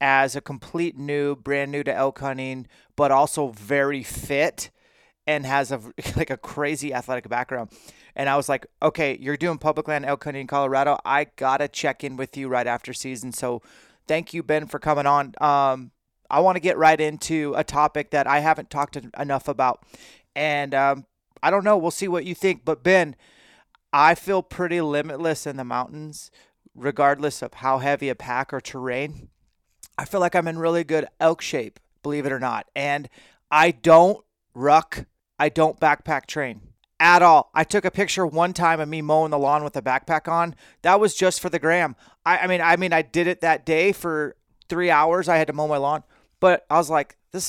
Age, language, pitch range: 30-49, English, 135-165 Hz